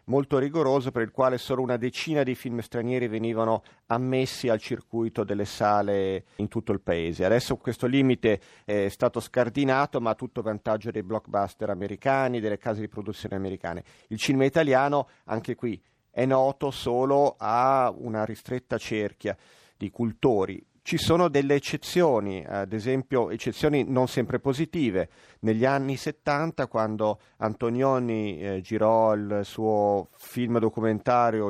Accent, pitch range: native, 105-130 Hz